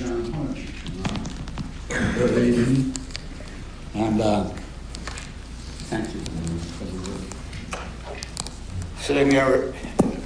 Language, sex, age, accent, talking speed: English, male, 60-79, American, 65 wpm